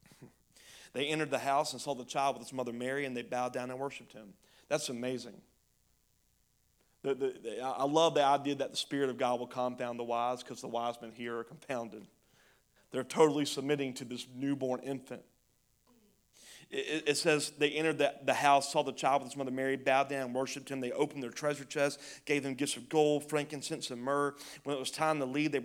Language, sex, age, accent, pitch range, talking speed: English, male, 30-49, American, 125-145 Hz, 215 wpm